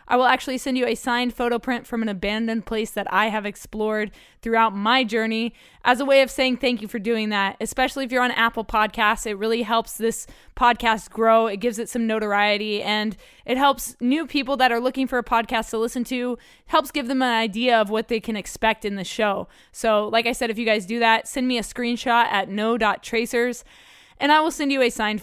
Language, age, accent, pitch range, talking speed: English, 20-39, American, 215-245 Hz, 230 wpm